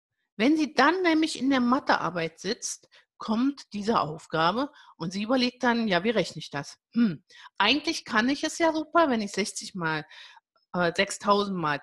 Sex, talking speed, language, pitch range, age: female, 170 wpm, German, 210-305 Hz, 50-69